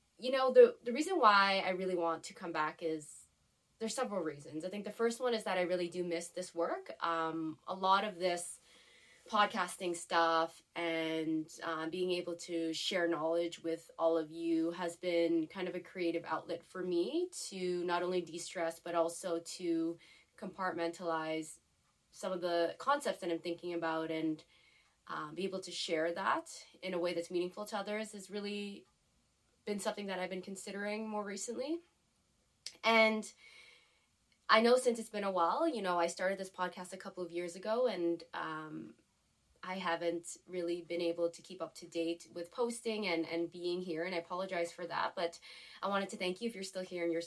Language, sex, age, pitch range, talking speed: English, female, 20-39, 170-195 Hz, 190 wpm